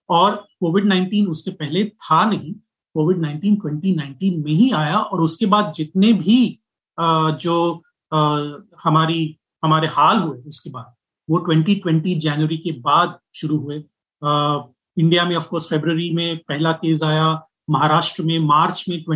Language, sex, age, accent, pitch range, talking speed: Hindi, male, 30-49, native, 155-190 Hz, 145 wpm